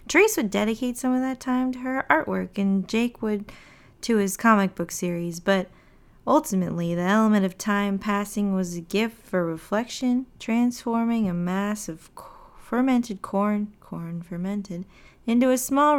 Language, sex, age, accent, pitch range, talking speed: English, female, 20-39, American, 180-230 Hz, 155 wpm